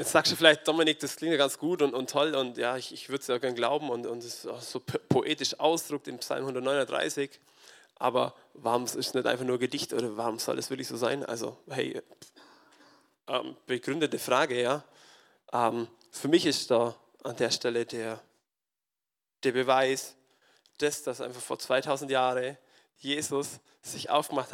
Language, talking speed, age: German, 185 wpm, 20-39